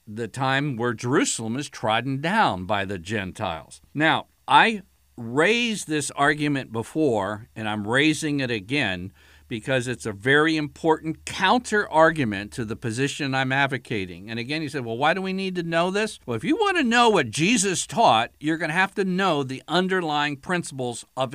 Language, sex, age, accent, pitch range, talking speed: English, male, 50-69, American, 120-165 Hz, 175 wpm